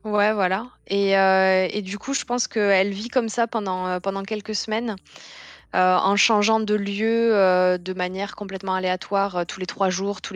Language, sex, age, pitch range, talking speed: French, female, 20-39, 180-205 Hz, 190 wpm